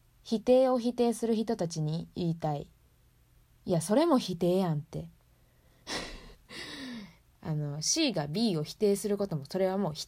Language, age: Japanese, 20-39